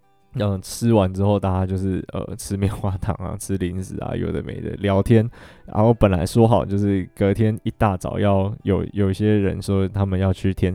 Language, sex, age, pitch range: Chinese, male, 20-39, 95-110 Hz